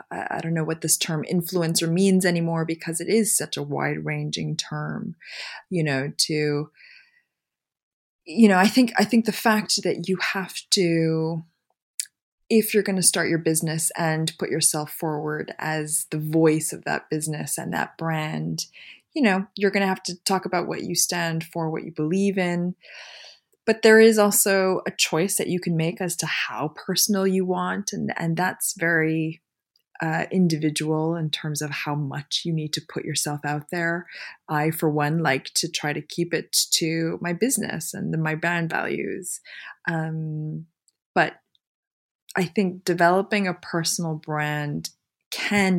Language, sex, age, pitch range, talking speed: French, female, 20-39, 155-185 Hz, 165 wpm